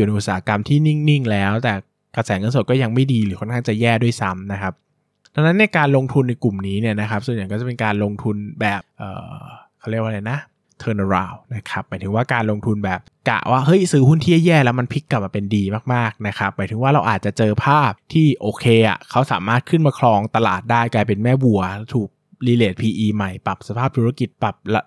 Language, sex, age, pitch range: Thai, male, 20-39, 100-125 Hz